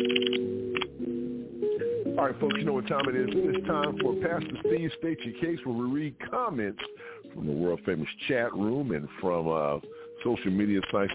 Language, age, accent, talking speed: English, 50-69, American, 170 wpm